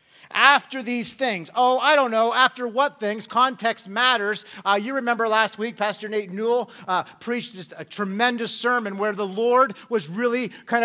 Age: 40-59